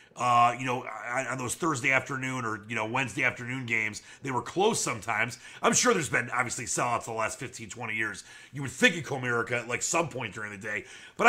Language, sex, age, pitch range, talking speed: English, male, 30-49, 120-165 Hz, 220 wpm